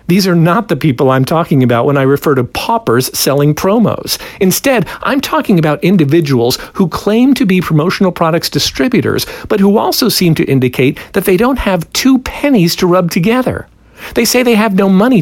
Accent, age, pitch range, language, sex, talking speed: American, 50-69, 160-220 Hz, English, male, 190 wpm